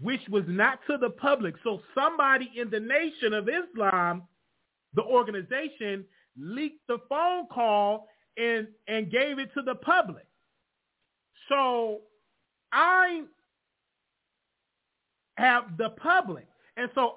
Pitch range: 220-310 Hz